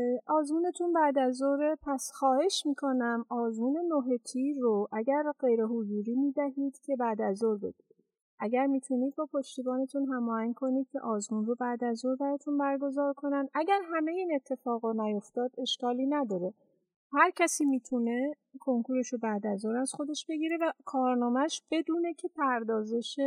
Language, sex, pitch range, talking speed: Persian, female, 230-280 Hz, 135 wpm